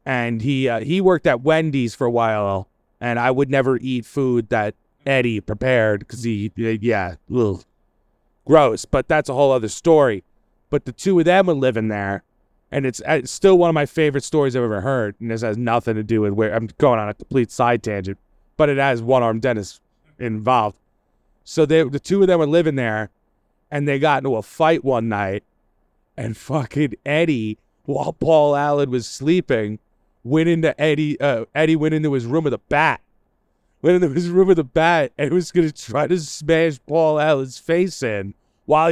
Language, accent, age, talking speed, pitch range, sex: English, American, 30-49, 200 wpm, 115-165 Hz, male